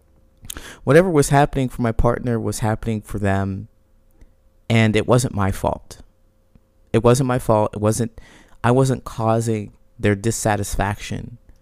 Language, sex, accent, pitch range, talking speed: English, male, American, 105-130 Hz, 135 wpm